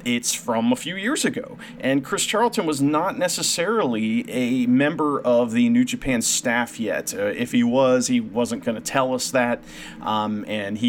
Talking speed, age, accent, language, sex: 185 wpm, 30-49, American, English, male